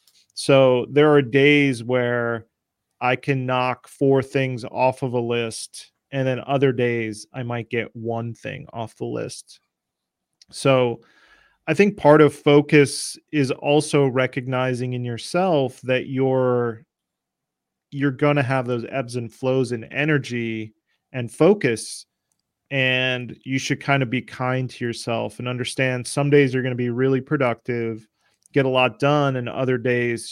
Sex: male